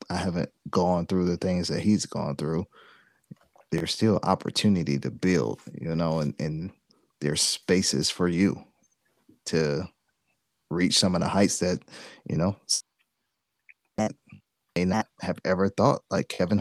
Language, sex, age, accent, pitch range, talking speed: English, male, 30-49, American, 85-100 Hz, 140 wpm